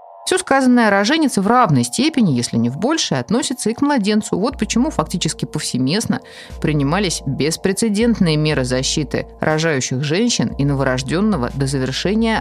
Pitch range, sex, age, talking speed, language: 135-215 Hz, female, 20-39, 140 wpm, Russian